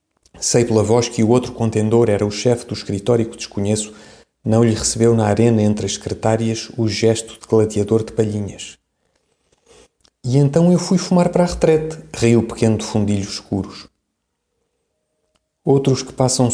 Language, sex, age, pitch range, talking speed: Portuguese, male, 40-59, 105-120 Hz, 165 wpm